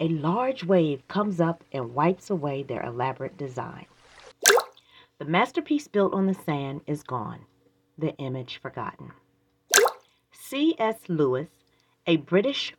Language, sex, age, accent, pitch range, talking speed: English, female, 40-59, American, 140-195 Hz, 120 wpm